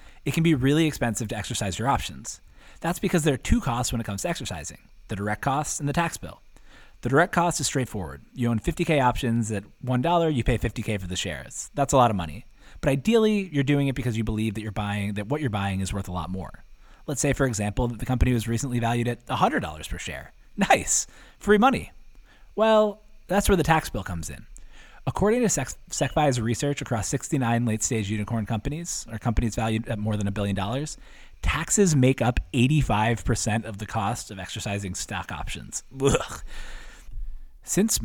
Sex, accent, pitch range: male, American, 105-145 Hz